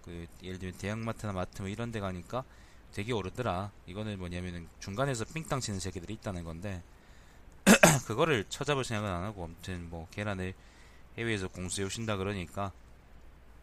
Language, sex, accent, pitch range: Korean, male, native, 80-115 Hz